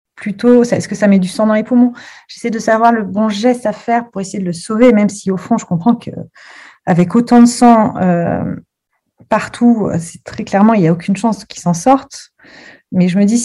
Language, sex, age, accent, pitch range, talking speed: French, female, 30-49, French, 180-225 Hz, 225 wpm